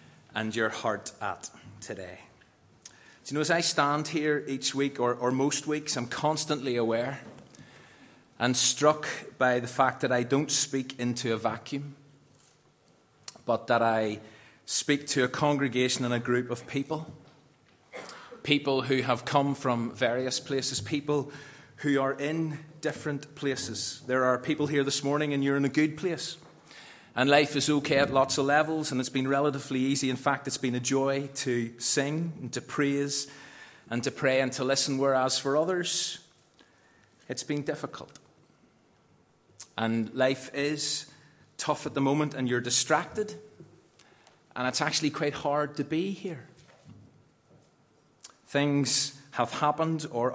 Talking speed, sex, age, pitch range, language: 155 wpm, male, 30-49, 125-150 Hz, English